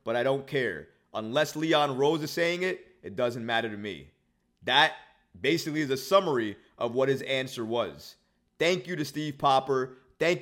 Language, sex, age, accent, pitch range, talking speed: English, male, 30-49, American, 135-195 Hz, 180 wpm